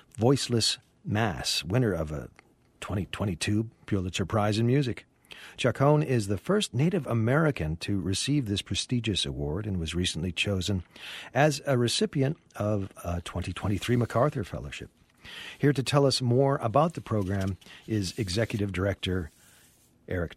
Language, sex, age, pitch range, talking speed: English, male, 40-59, 95-135 Hz, 135 wpm